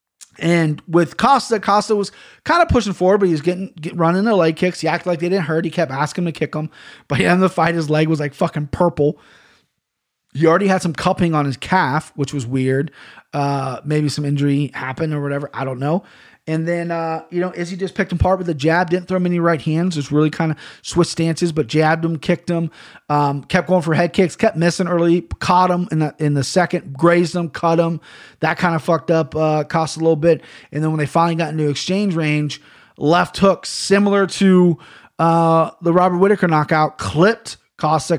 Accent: American